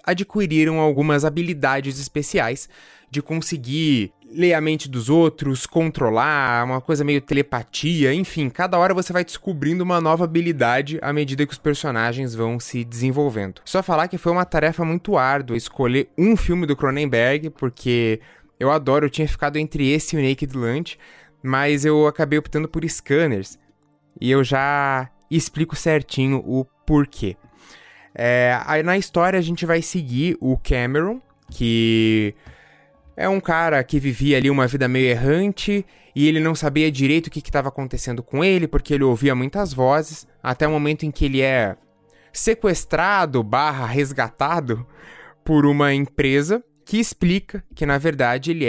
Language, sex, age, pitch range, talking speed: Portuguese, male, 20-39, 130-165 Hz, 155 wpm